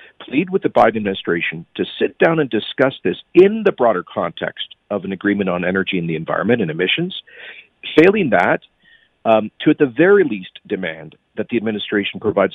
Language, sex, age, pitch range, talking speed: English, male, 50-69, 100-155 Hz, 180 wpm